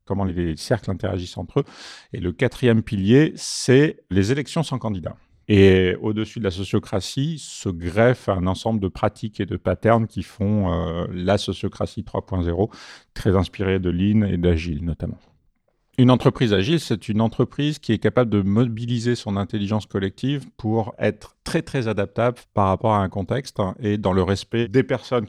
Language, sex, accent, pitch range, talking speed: French, male, French, 100-120 Hz, 170 wpm